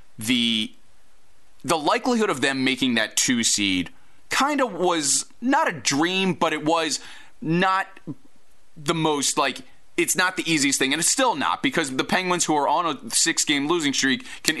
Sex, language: male, English